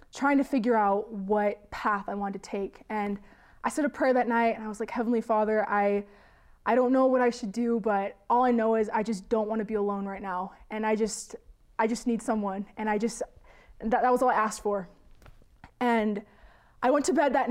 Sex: female